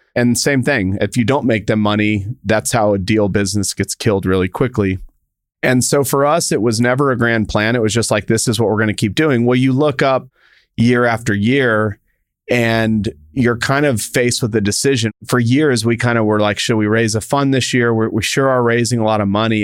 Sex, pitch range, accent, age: male, 105-130 Hz, American, 40-59